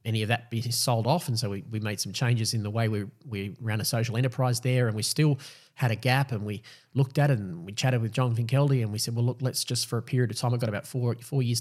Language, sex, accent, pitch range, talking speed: English, male, Australian, 115-135 Hz, 300 wpm